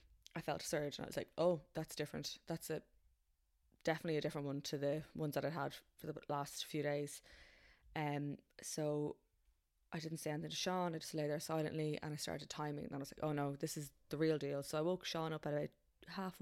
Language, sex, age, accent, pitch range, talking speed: English, female, 20-39, Irish, 145-160 Hz, 240 wpm